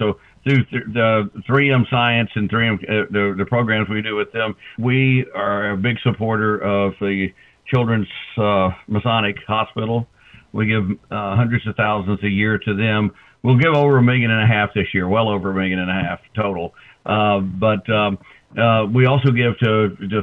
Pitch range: 105-115 Hz